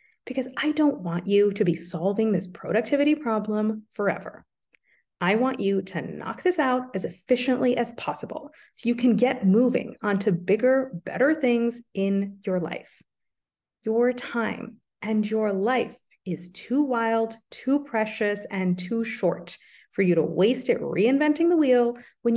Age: 30-49